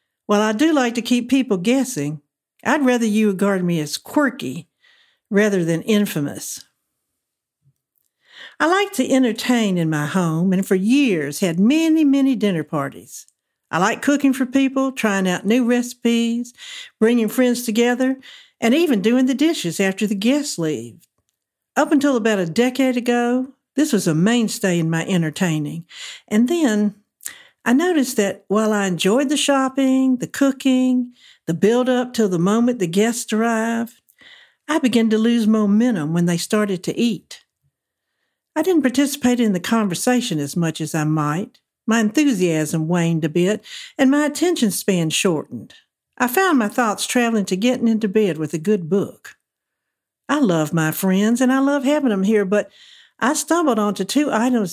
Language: English